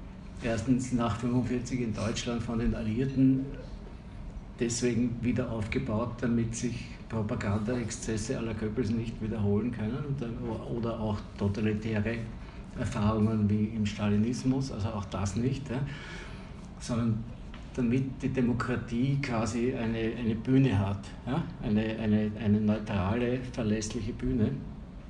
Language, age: German, 60-79